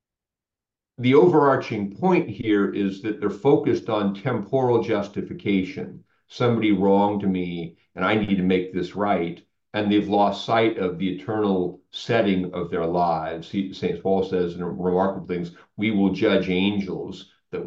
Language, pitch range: English, 90-110 Hz